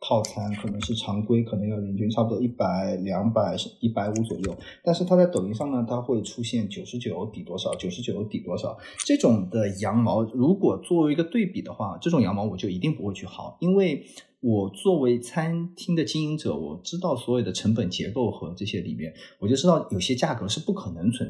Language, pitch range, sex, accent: Chinese, 105-170 Hz, male, native